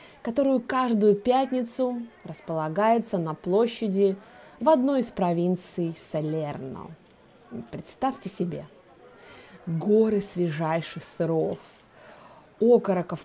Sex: female